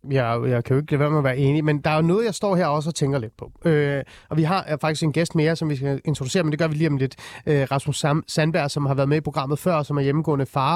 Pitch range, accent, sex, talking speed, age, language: 140-170 Hz, native, male, 310 wpm, 30-49, Danish